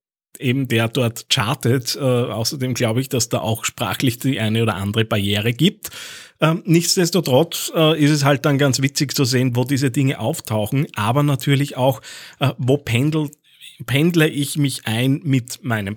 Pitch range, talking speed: 120-150 Hz, 170 wpm